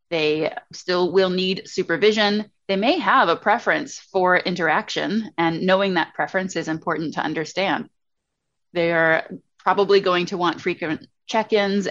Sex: female